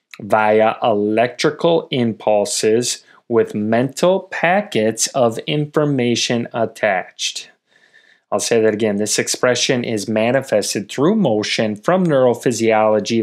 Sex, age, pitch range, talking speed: male, 30-49, 105-125 Hz, 95 wpm